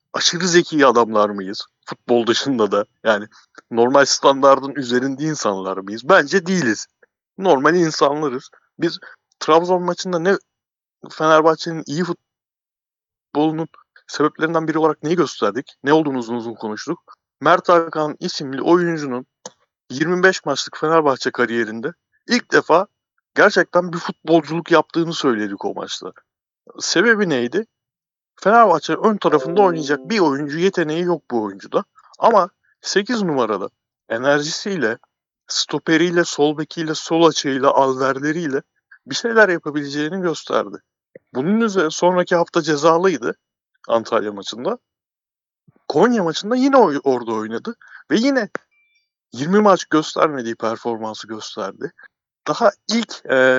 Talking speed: 110 wpm